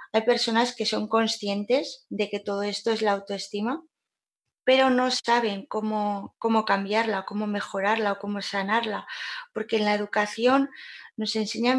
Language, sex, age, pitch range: Spanish, female, 20-39, 205-240 Hz